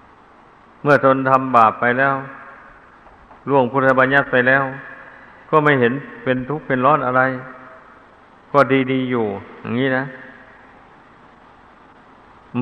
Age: 60-79